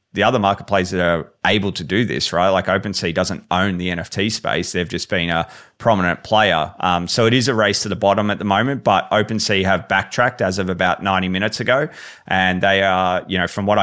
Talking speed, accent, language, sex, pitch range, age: 225 wpm, Australian, English, male, 90-105 Hz, 30-49